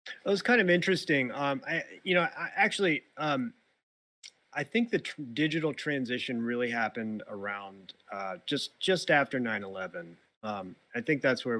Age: 30-49